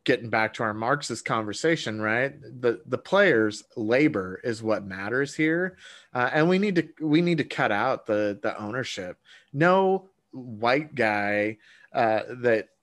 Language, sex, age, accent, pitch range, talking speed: English, male, 30-49, American, 110-140 Hz, 155 wpm